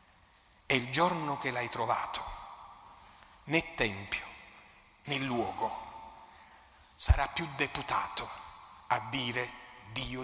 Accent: native